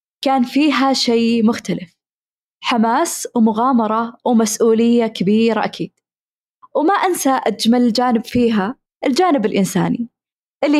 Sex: female